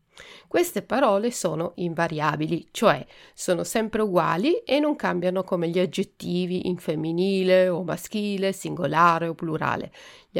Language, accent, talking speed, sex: Italian, native, 125 wpm, female